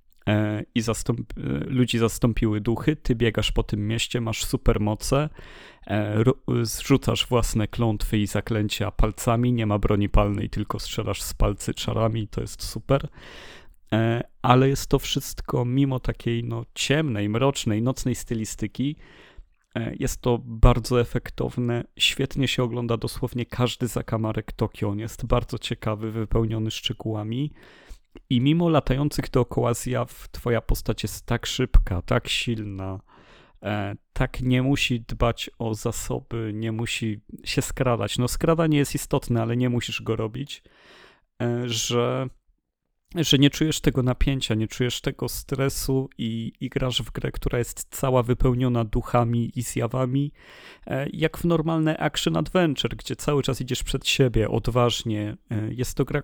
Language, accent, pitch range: Polish, native, 110-130 Hz